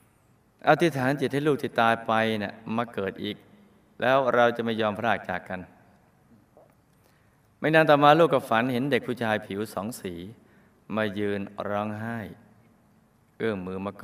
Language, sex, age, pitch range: Thai, male, 20-39, 100-125 Hz